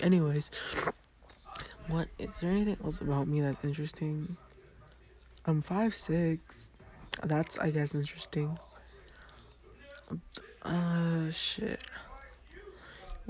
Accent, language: American, English